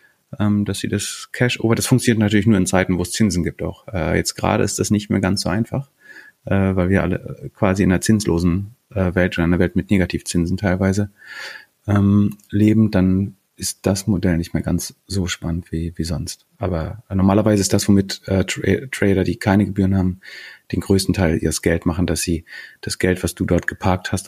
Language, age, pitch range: German, 30-49, 90-110 Hz